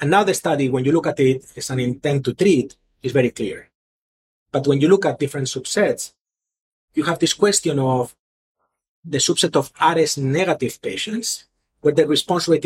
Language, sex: English, male